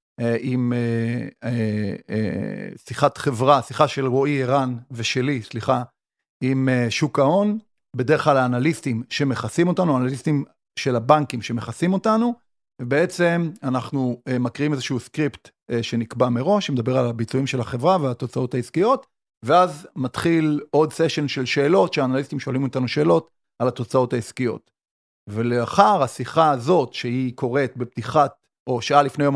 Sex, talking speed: male, 120 wpm